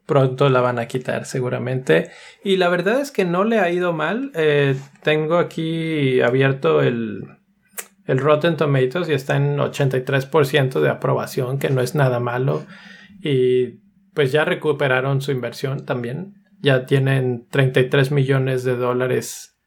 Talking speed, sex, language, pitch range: 145 wpm, male, Spanish, 130-160 Hz